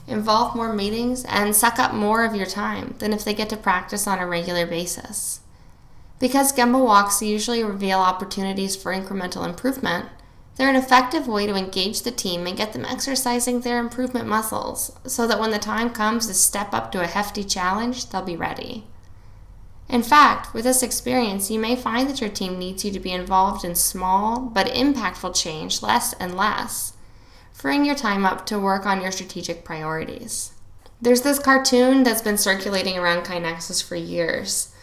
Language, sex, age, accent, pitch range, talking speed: English, female, 10-29, American, 180-235 Hz, 180 wpm